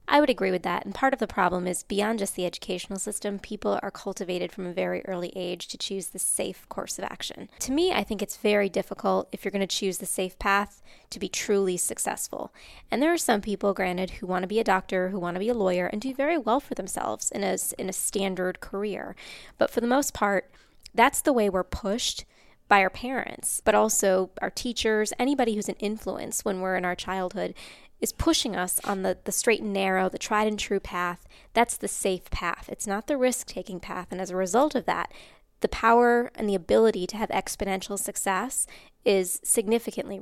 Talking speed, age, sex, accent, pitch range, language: 215 wpm, 20-39, female, American, 190-220 Hz, English